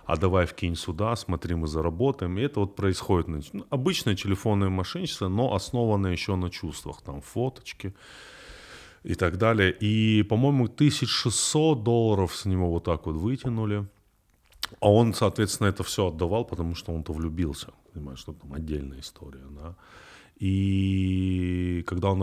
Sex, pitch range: male, 80-105 Hz